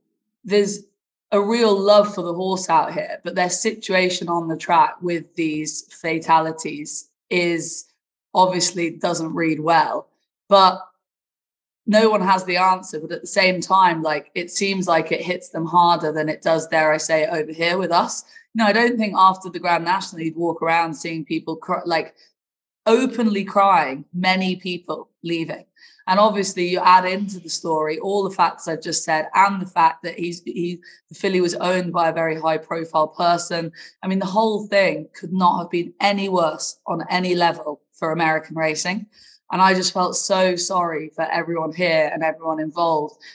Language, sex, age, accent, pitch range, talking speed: English, female, 20-39, British, 160-190 Hz, 185 wpm